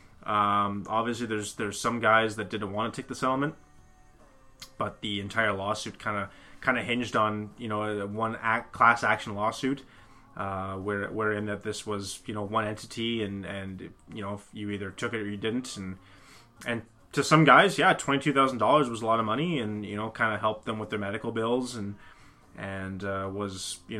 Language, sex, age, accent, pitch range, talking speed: English, male, 20-39, American, 100-115 Hz, 200 wpm